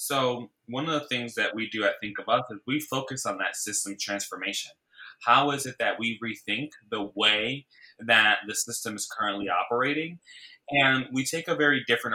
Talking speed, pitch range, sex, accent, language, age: 195 wpm, 115-140 Hz, male, American, English, 20-39